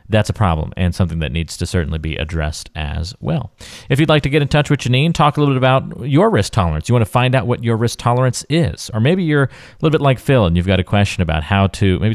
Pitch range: 90-125 Hz